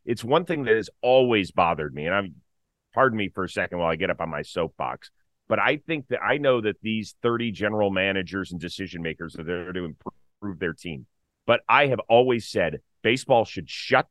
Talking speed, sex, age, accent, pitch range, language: 210 wpm, male, 30-49, American, 95-125 Hz, English